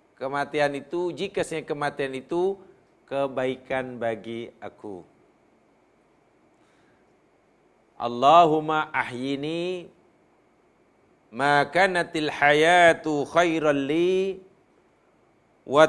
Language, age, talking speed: Malayalam, 50-69, 55 wpm